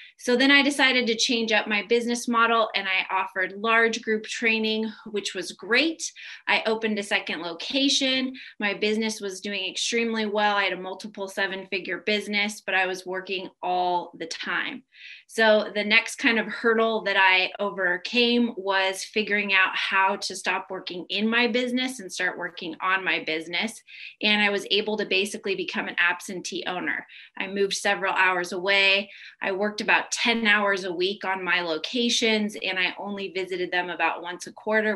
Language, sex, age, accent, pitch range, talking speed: English, female, 20-39, American, 190-225 Hz, 175 wpm